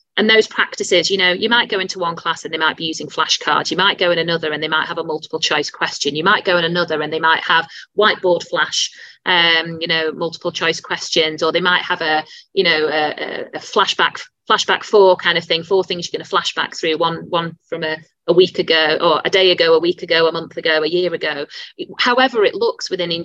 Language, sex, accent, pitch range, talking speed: English, female, British, 165-230 Hz, 240 wpm